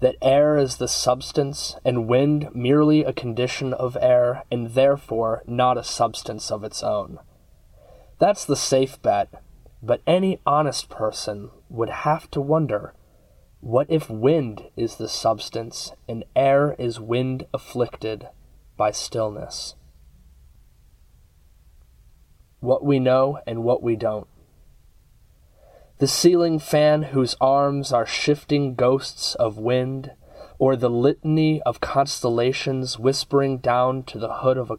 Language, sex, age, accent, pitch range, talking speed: English, male, 20-39, American, 110-135 Hz, 130 wpm